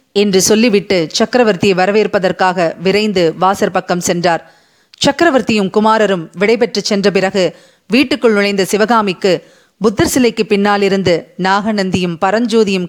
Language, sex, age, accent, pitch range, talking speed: Tamil, female, 30-49, native, 190-235 Hz, 90 wpm